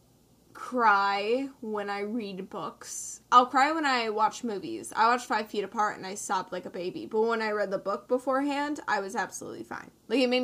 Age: 10-29